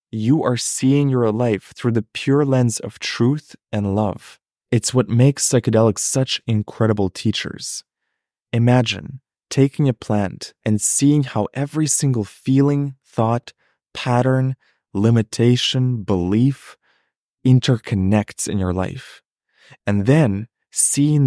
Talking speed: 115 wpm